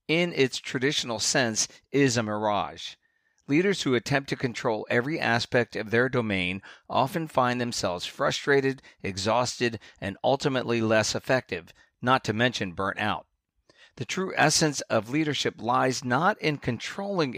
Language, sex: English, male